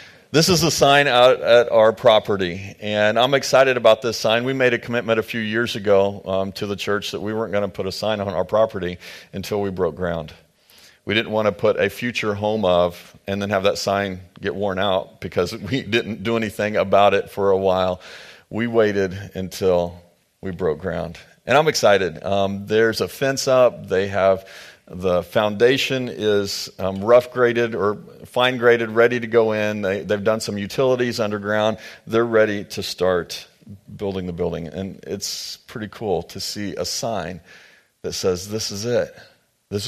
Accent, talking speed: American, 180 wpm